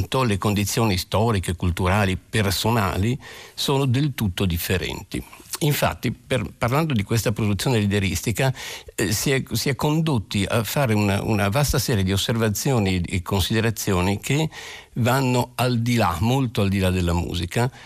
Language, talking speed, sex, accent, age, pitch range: Italian, 140 wpm, male, native, 50-69, 95-120 Hz